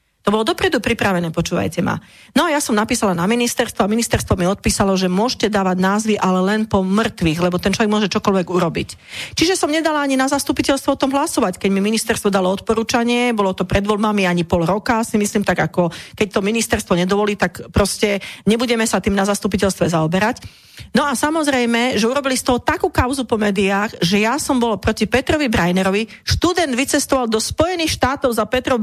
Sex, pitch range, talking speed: female, 195-260 Hz, 195 wpm